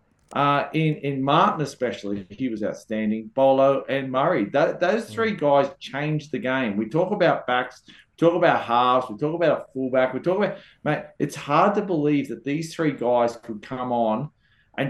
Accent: Australian